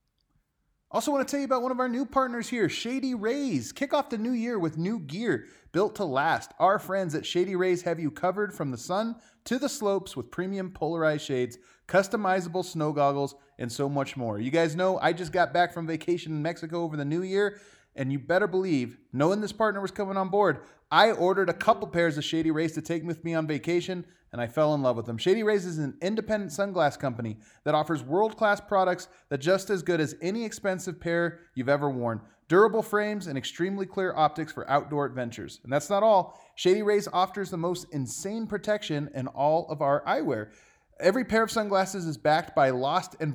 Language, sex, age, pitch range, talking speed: English, male, 30-49, 150-205 Hz, 215 wpm